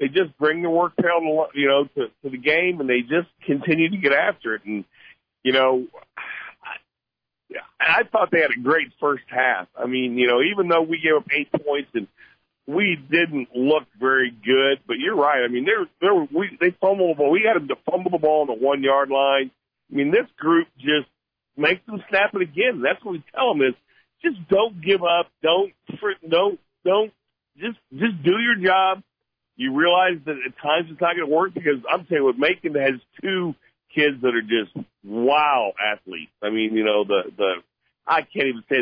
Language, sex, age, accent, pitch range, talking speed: English, male, 50-69, American, 130-190 Hz, 210 wpm